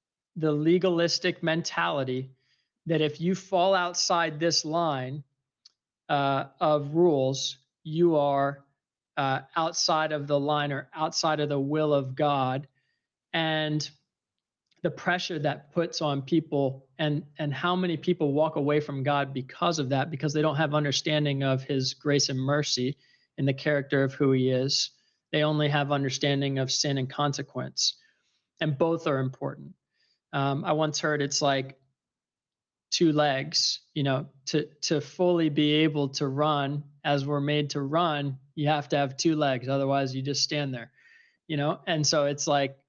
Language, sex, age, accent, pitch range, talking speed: English, male, 40-59, American, 140-160 Hz, 160 wpm